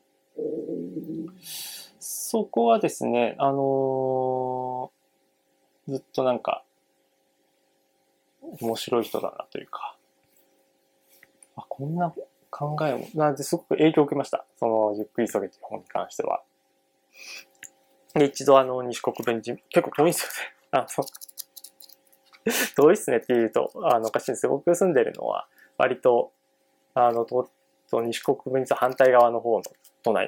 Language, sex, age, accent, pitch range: Japanese, male, 20-39, native, 120-165 Hz